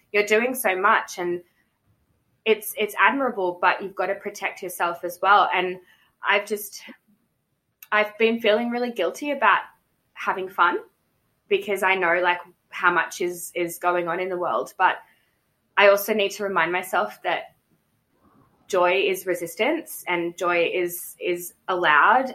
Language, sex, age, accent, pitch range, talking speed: English, female, 20-39, Australian, 175-215 Hz, 150 wpm